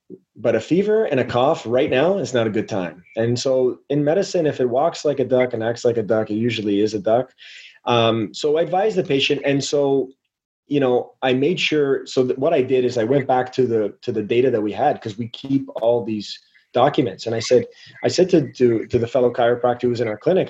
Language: English